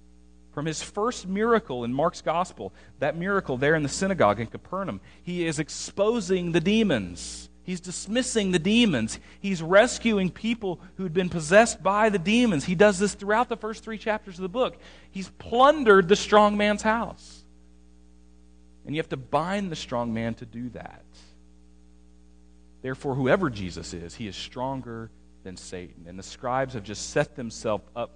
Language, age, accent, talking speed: English, 40-59, American, 165 wpm